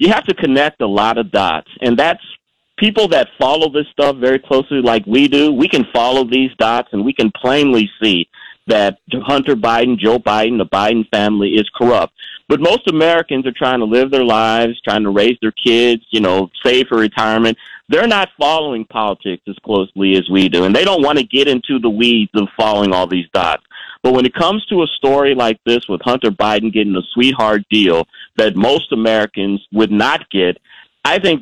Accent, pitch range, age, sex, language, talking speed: American, 110-140 Hz, 40-59, male, English, 200 wpm